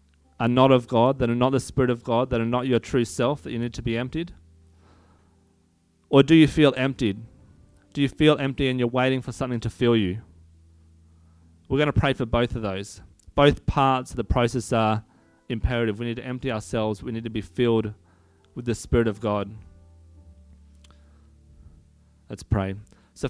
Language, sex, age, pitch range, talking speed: English, male, 30-49, 90-130 Hz, 190 wpm